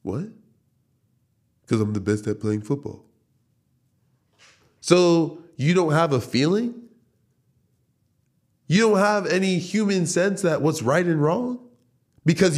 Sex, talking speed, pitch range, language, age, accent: male, 125 wpm, 130-210 Hz, English, 20-39, American